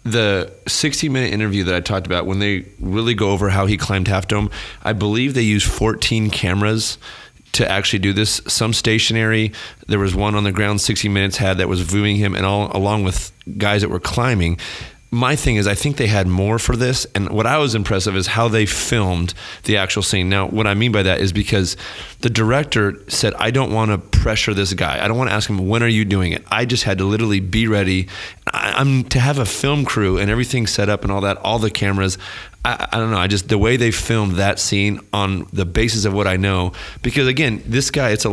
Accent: American